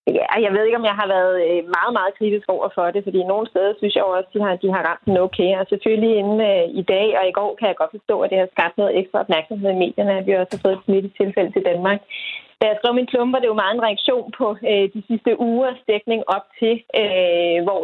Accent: native